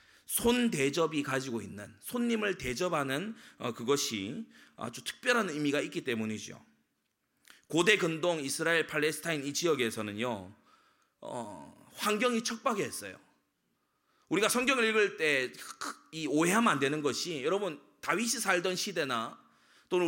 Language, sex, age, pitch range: Korean, male, 30-49, 165-245 Hz